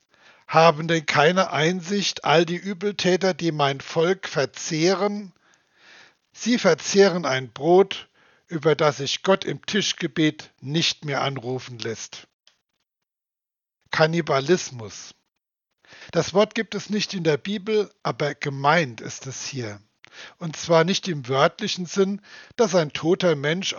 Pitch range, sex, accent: 150-185 Hz, male, German